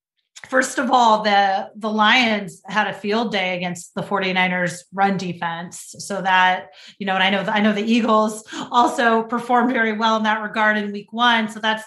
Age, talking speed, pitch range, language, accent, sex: 30-49, 195 wpm, 185-225 Hz, English, American, female